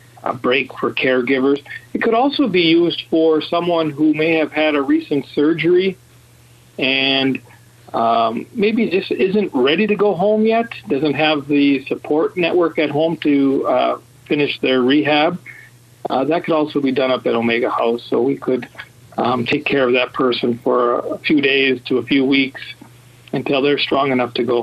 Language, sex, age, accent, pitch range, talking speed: English, male, 50-69, American, 120-155 Hz, 180 wpm